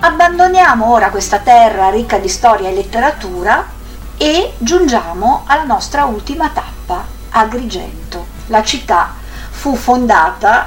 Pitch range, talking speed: 195-255 Hz, 110 wpm